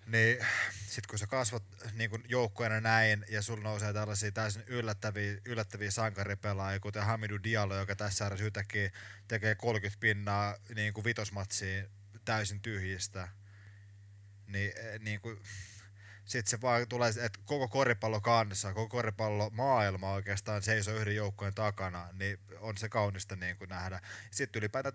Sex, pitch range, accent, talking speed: male, 100-115 Hz, native, 125 wpm